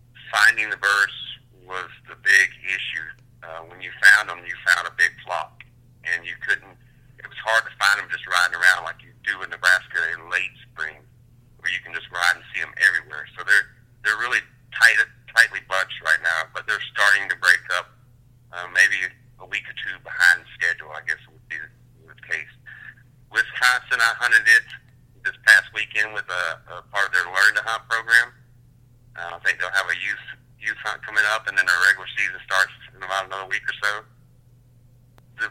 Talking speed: 200 wpm